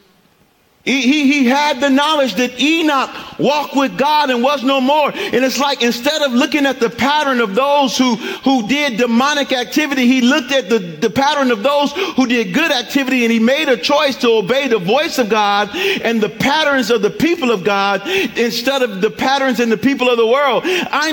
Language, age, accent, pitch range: English, 50-69, American, 230-285 Hz